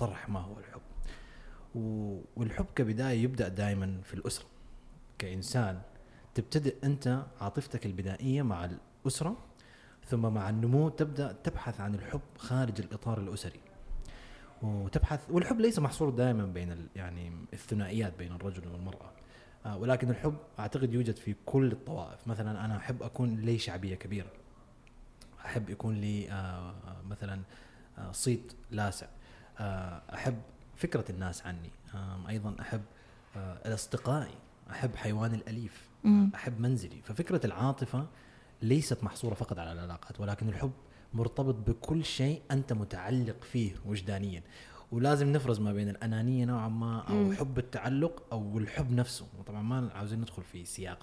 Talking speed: 125 wpm